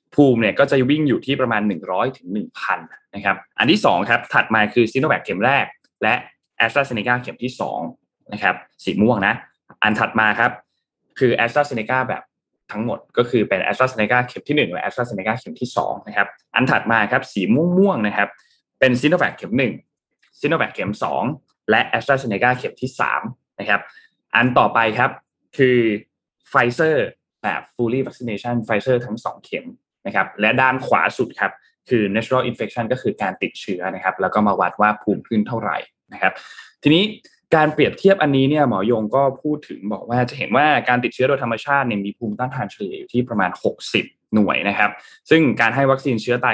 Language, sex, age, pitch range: Thai, male, 20-39, 110-135 Hz